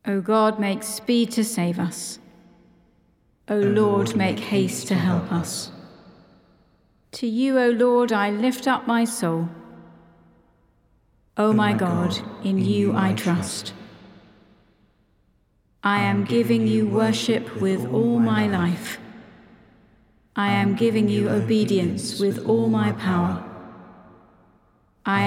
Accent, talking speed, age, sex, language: British, 115 wpm, 40-59, female, English